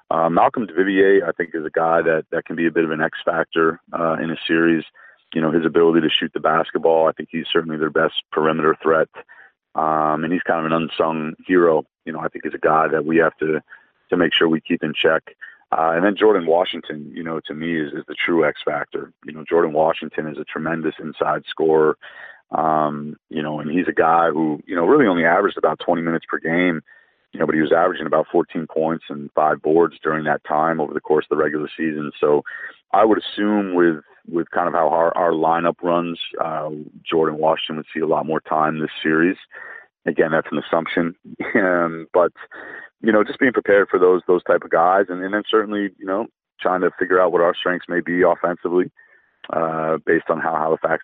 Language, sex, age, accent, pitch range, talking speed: English, male, 40-59, American, 80-90 Hz, 225 wpm